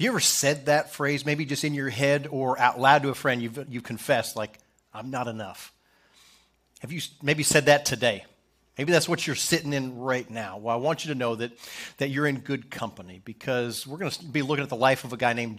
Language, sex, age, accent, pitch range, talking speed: English, male, 40-59, American, 130-170 Hz, 245 wpm